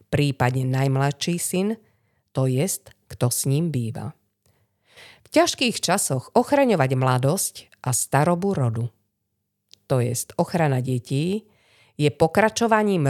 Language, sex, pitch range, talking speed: Slovak, female, 125-185 Hz, 105 wpm